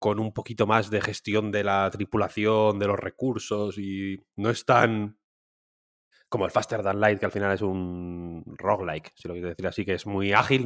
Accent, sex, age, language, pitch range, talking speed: Spanish, male, 20-39, Spanish, 95-115 Hz, 205 wpm